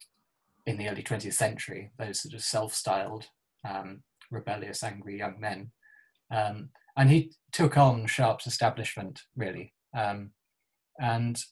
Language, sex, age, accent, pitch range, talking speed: English, male, 20-39, British, 115-135 Hz, 130 wpm